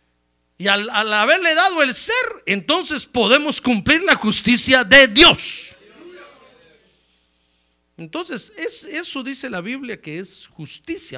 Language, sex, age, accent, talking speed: Spanish, male, 50-69, Mexican, 125 wpm